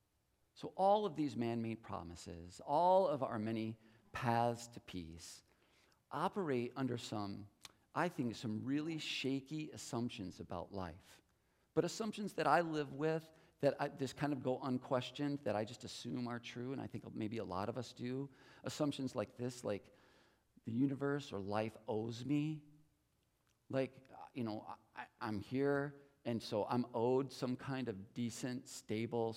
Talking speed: 155 wpm